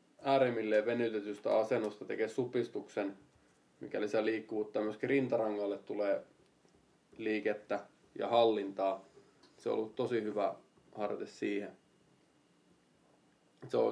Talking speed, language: 90 wpm, Finnish